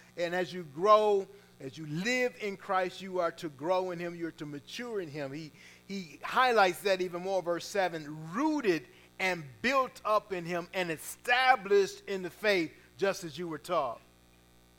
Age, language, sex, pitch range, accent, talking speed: 40-59, English, male, 165-225 Hz, American, 185 wpm